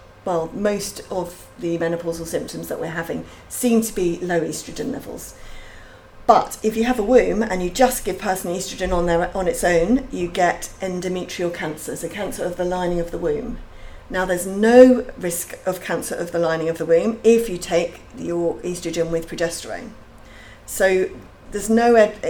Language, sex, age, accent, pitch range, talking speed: English, female, 40-59, British, 170-220 Hz, 180 wpm